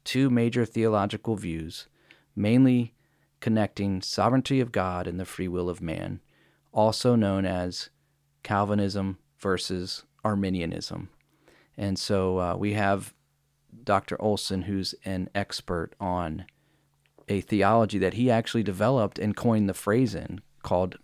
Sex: male